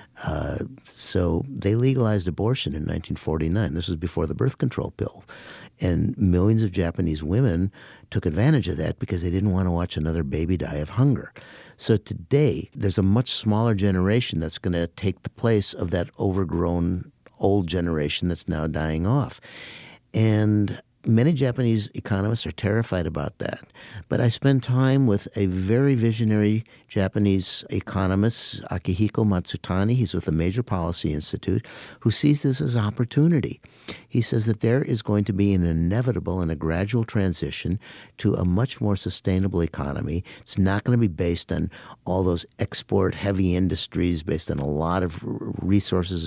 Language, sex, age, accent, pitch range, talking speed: English, male, 60-79, American, 90-115 Hz, 160 wpm